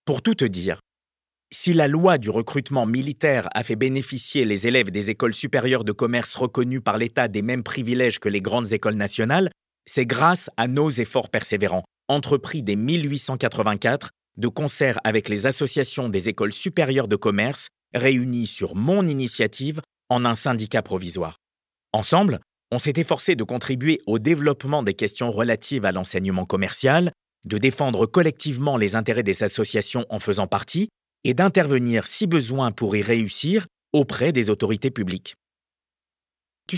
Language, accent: French, French